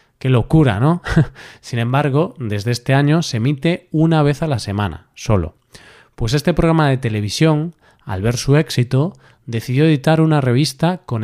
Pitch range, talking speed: 115-145 Hz, 160 wpm